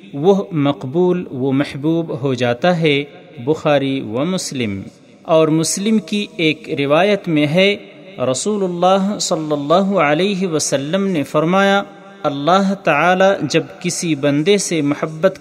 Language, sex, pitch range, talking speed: Urdu, male, 145-195 Hz, 125 wpm